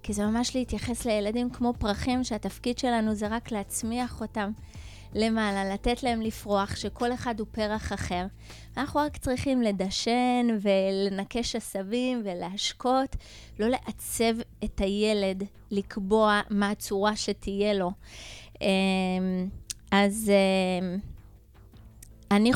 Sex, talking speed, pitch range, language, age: female, 105 wpm, 190-240 Hz, Hebrew, 20-39